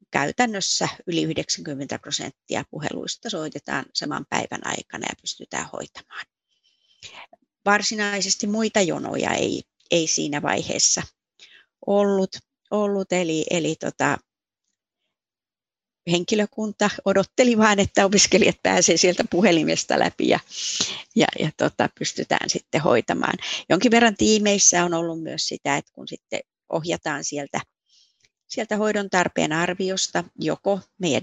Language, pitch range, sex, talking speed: Finnish, 175-210 Hz, female, 110 wpm